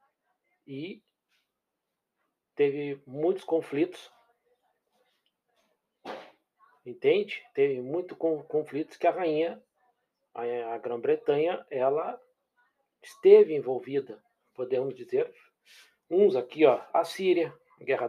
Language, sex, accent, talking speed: Portuguese, male, Brazilian, 85 wpm